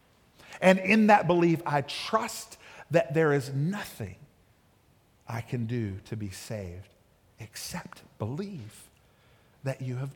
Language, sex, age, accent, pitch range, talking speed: English, male, 50-69, American, 150-235 Hz, 125 wpm